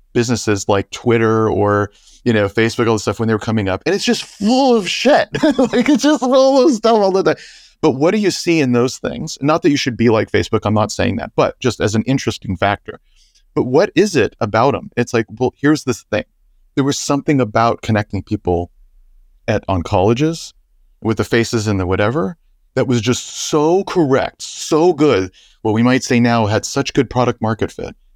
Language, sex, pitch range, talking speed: English, male, 105-150 Hz, 215 wpm